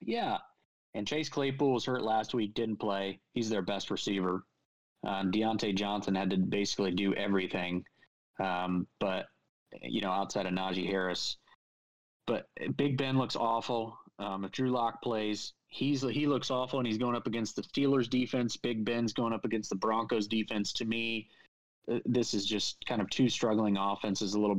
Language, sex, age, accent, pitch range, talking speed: English, male, 20-39, American, 95-115 Hz, 175 wpm